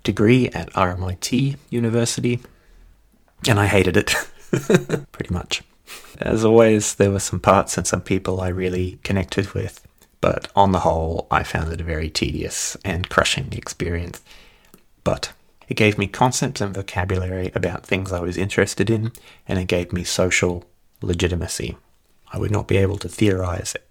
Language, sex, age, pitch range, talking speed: English, male, 30-49, 85-105 Hz, 155 wpm